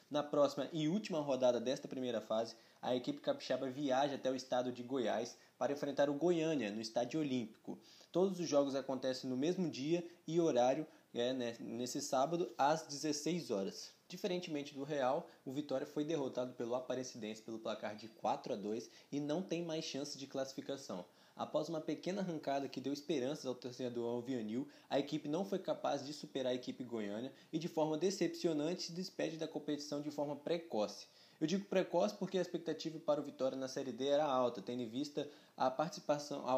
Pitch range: 130-160 Hz